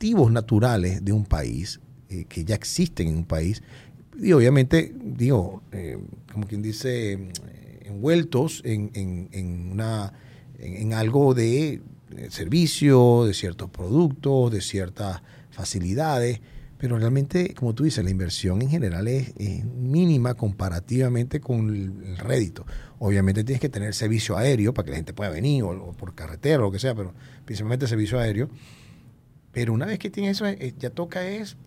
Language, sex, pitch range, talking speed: Spanish, male, 105-140 Hz, 155 wpm